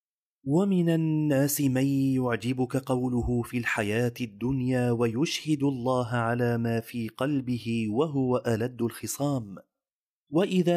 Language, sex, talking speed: Arabic, male, 100 wpm